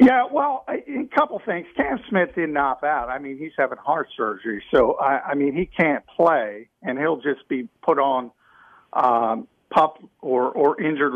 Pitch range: 130-170 Hz